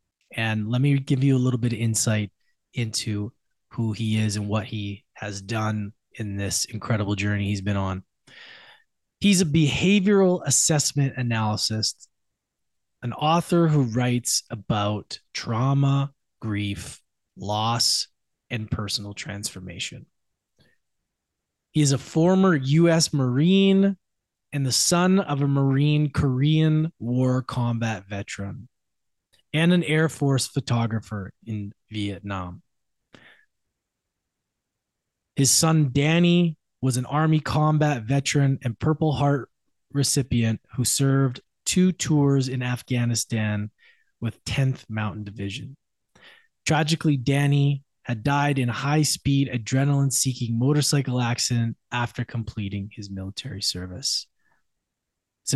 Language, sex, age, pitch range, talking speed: English, male, 20-39, 110-145 Hz, 110 wpm